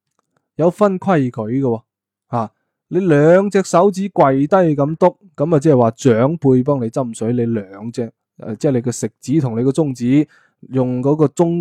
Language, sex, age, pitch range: Chinese, male, 20-39, 115-155 Hz